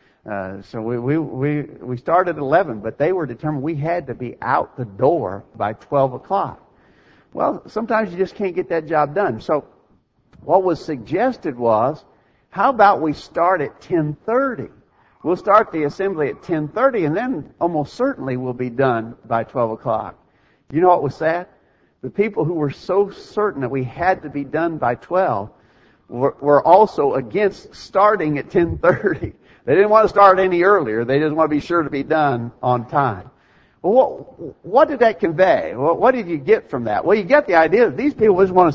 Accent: American